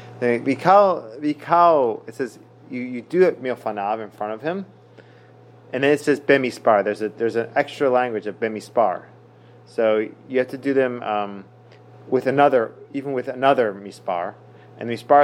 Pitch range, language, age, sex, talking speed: 110-140 Hz, English, 30-49, male, 160 wpm